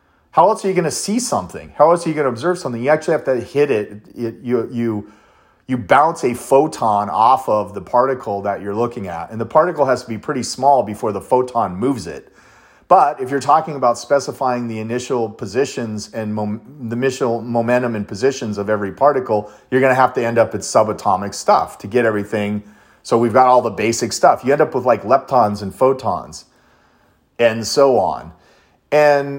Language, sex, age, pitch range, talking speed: English, male, 30-49, 115-145 Hz, 200 wpm